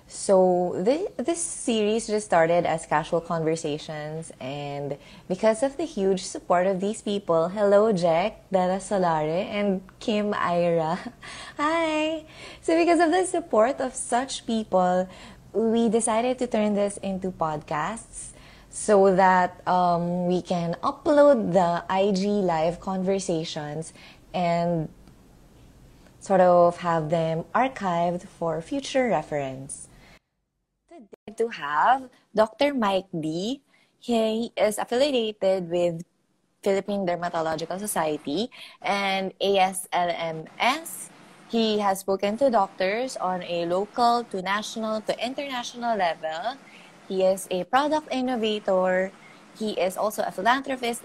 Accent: native